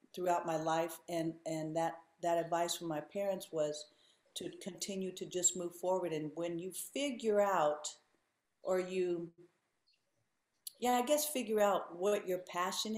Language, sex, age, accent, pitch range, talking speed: English, female, 50-69, American, 165-200 Hz, 155 wpm